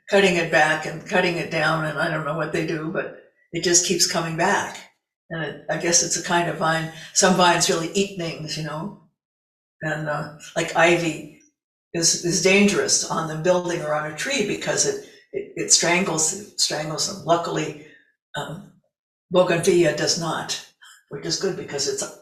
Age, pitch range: 60-79, 165-195 Hz